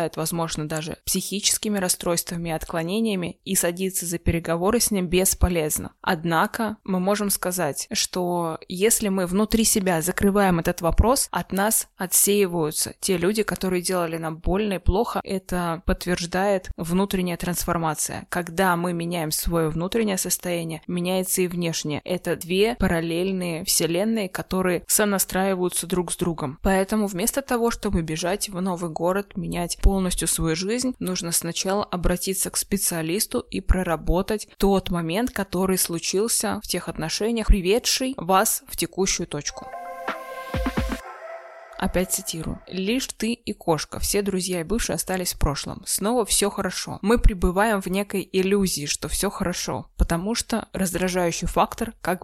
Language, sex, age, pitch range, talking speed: Russian, female, 20-39, 170-205 Hz, 135 wpm